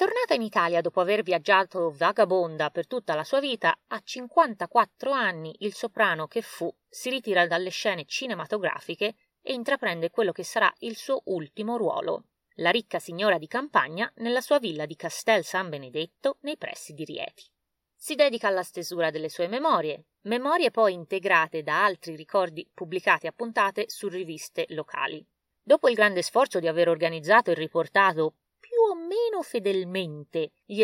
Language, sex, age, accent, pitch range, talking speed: Italian, female, 30-49, native, 165-235 Hz, 155 wpm